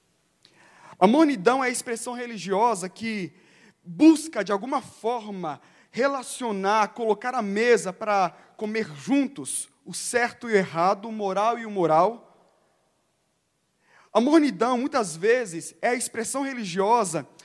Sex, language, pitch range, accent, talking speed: male, Portuguese, 185-245 Hz, Brazilian, 125 wpm